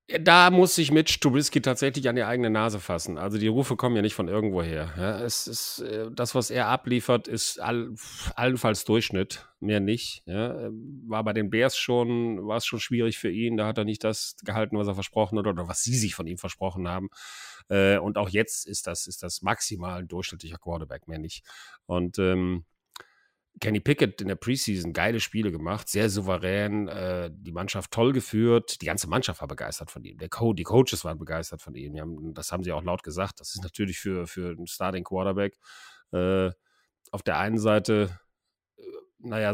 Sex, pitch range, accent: male, 90-115 Hz, German